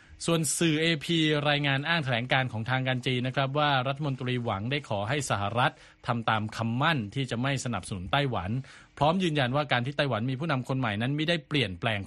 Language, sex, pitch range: Thai, male, 110-135 Hz